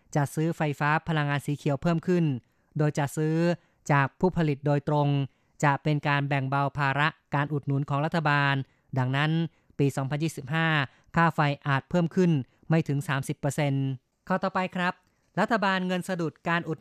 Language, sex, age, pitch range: Thai, female, 20-39, 140-160 Hz